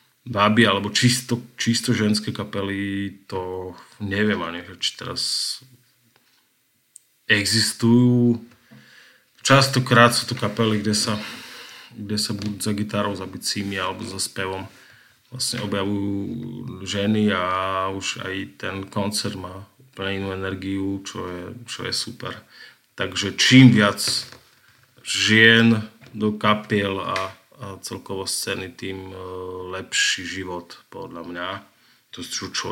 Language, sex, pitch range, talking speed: Slovak, male, 95-120 Hz, 110 wpm